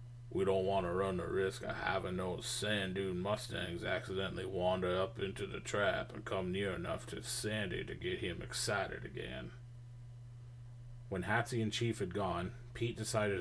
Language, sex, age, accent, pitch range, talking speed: English, male, 30-49, American, 100-120 Hz, 170 wpm